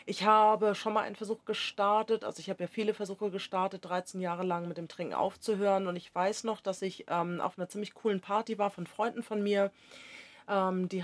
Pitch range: 170-210 Hz